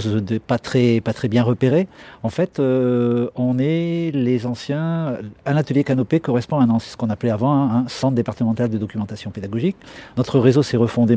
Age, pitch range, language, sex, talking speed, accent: 50-69, 115-135 Hz, French, male, 200 wpm, French